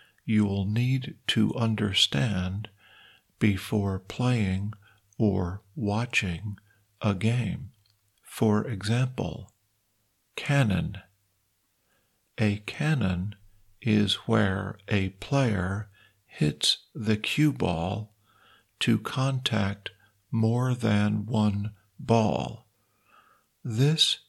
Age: 50-69